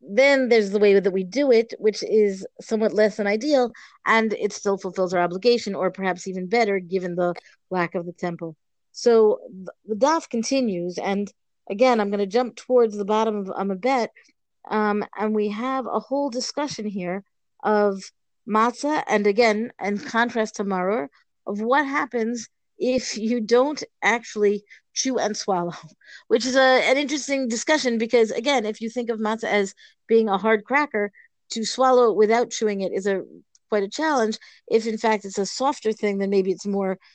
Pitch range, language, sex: 200-240 Hz, English, female